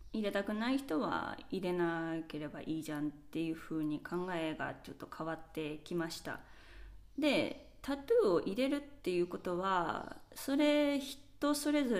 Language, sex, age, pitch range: Japanese, female, 20-39, 170-255 Hz